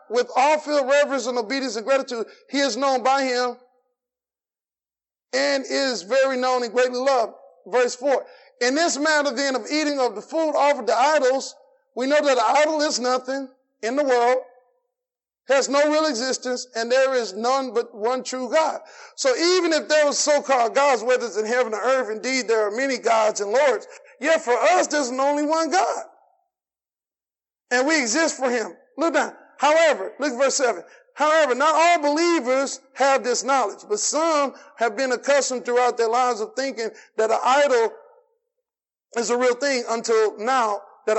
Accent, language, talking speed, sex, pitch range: American, English, 180 wpm, male, 245-295 Hz